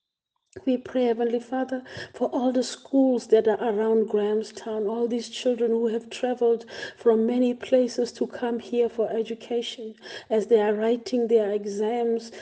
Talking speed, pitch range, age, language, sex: 155 wpm, 210-235 Hz, 50-69, English, female